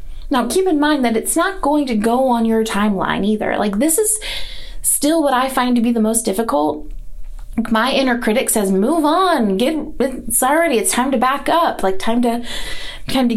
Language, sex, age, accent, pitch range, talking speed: English, female, 30-49, American, 220-285 Hz, 195 wpm